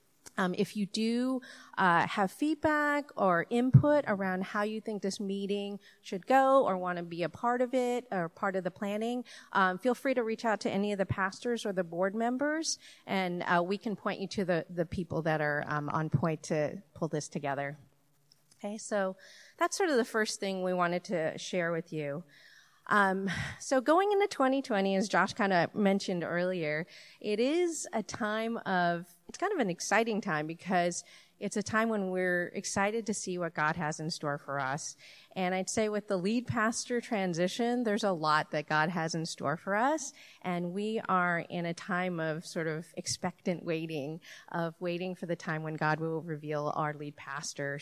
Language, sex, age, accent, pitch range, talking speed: English, female, 40-59, American, 165-220 Hz, 195 wpm